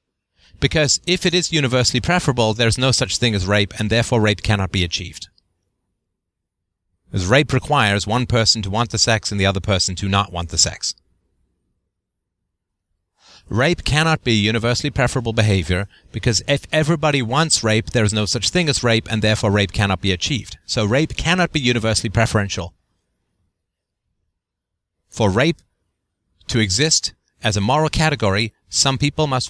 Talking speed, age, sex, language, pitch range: 155 wpm, 30-49, male, English, 90-115 Hz